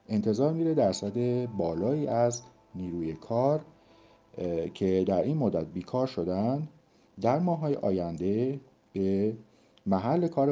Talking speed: 110 wpm